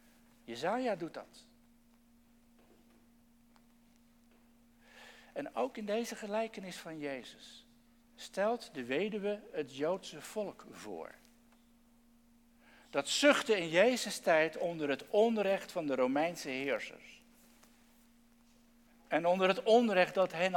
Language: English